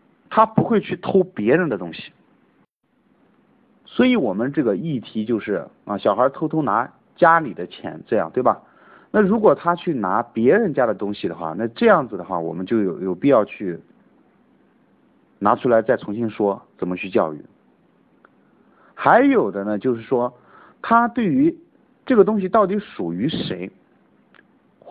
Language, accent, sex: Chinese, native, male